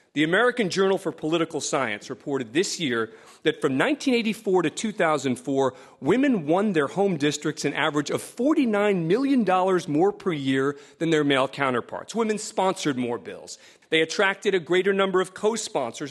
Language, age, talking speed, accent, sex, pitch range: English, 40-59, 155 wpm, American, male, 150-200 Hz